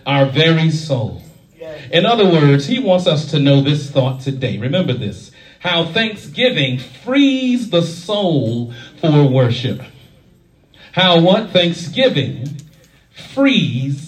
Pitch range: 135-175 Hz